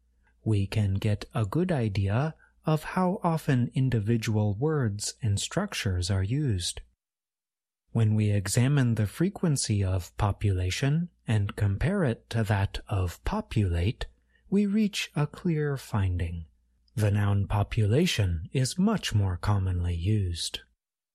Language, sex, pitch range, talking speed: English, male, 100-145 Hz, 120 wpm